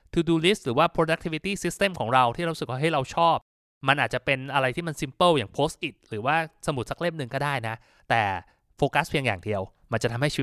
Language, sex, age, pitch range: Thai, male, 20-39, 120-165 Hz